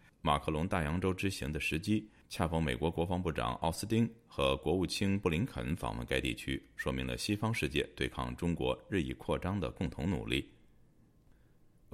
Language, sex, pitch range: Chinese, male, 65-95 Hz